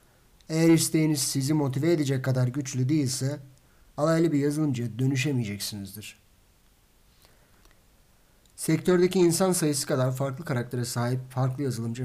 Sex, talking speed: male, 105 wpm